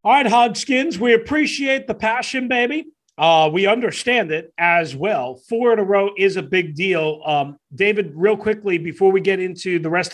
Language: English